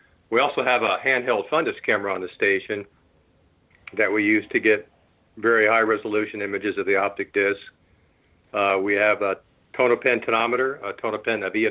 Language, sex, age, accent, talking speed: English, male, 50-69, American, 160 wpm